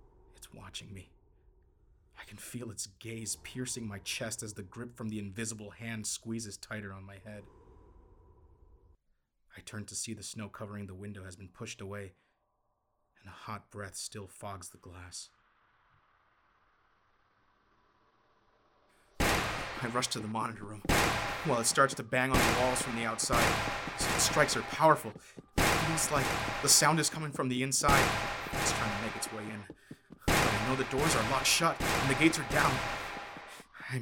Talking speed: 165 wpm